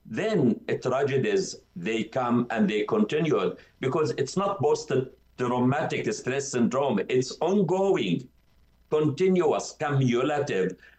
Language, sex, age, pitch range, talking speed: English, male, 60-79, 120-170 Hz, 110 wpm